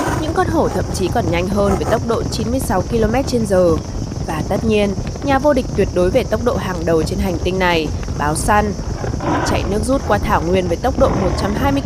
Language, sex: Vietnamese, female